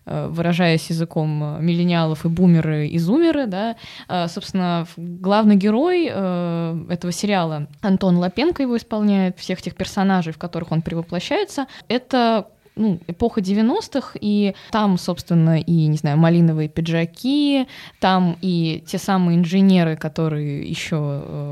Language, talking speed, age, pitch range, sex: Russian, 120 wpm, 20-39, 160-200 Hz, female